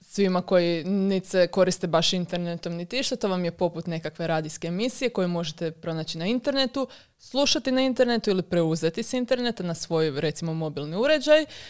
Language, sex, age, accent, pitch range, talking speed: Croatian, female, 20-39, native, 170-200 Hz, 165 wpm